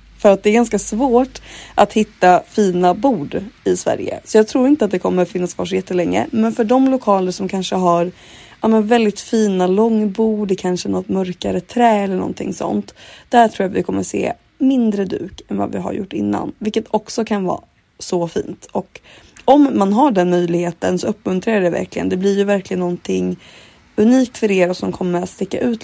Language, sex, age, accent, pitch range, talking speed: Swedish, female, 30-49, native, 180-220 Hz, 200 wpm